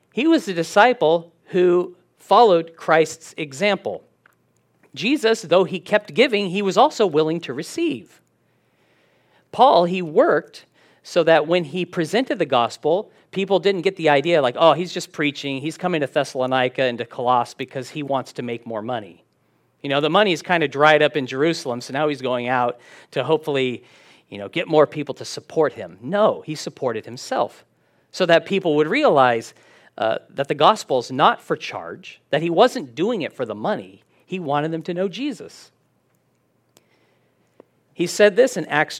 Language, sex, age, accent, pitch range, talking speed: English, male, 40-59, American, 145-205 Hz, 175 wpm